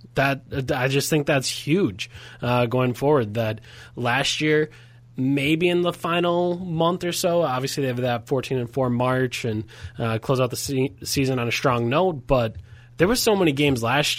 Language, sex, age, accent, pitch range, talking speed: English, male, 20-39, American, 125-150 Hz, 190 wpm